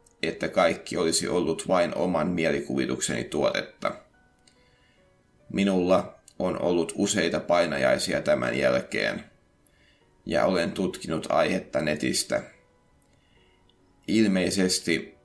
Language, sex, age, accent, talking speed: Finnish, male, 30-49, native, 85 wpm